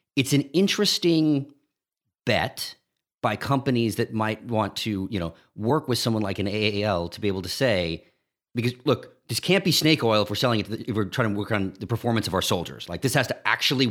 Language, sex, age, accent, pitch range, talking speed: English, male, 40-59, American, 100-130 Hz, 225 wpm